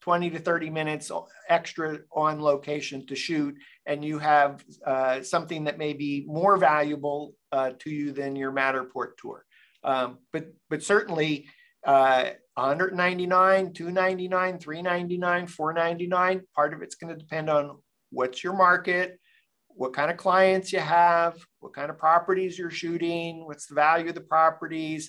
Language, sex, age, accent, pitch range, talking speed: English, male, 50-69, American, 145-175 Hz, 150 wpm